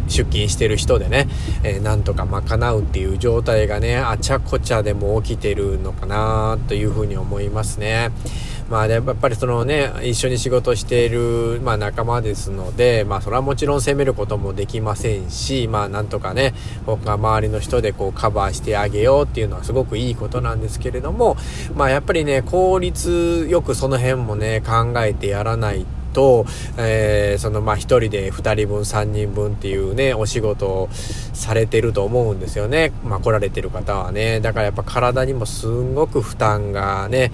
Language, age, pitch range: Japanese, 20-39, 100-120 Hz